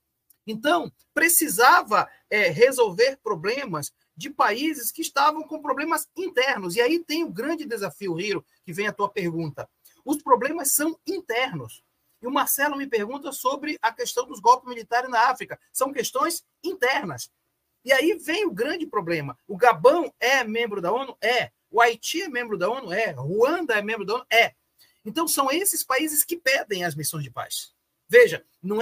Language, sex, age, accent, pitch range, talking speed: Portuguese, male, 40-59, Brazilian, 225-330 Hz, 170 wpm